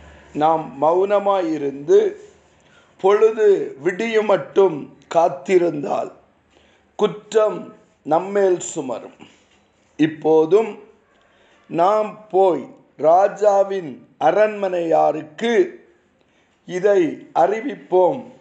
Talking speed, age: 45 wpm, 50-69